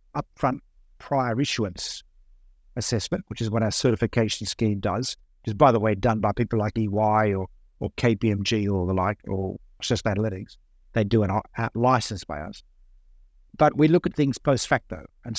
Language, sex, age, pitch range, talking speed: English, male, 50-69, 105-125 Hz, 180 wpm